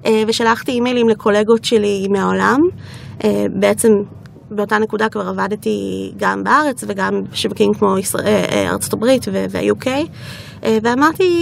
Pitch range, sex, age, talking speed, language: 205-245 Hz, female, 20-39, 95 wpm, Hebrew